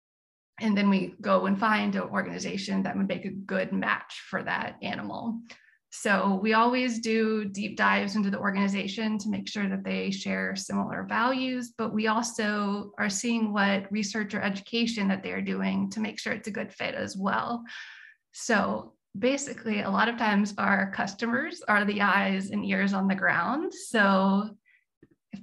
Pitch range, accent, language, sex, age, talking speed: 195-230 Hz, American, English, female, 20-39, 170 wpm